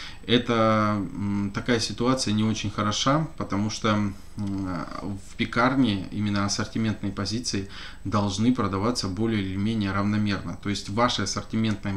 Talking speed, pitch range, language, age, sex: 120 wpm, 100-115 Hz, Russian, 20-39, male